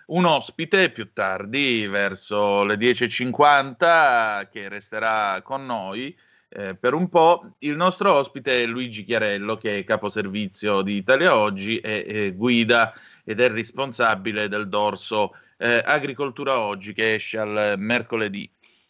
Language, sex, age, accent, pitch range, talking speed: Italian, male, 30-49, native, 110-150 Hz, 135 wpm